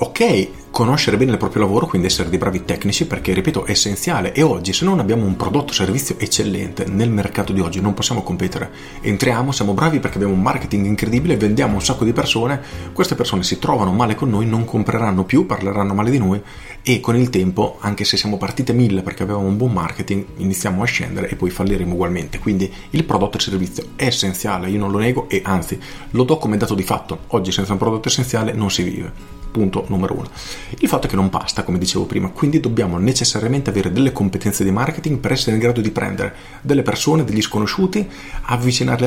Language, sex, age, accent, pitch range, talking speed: Italian, male, 40-59, native, 95-125 Hz, 210 wpm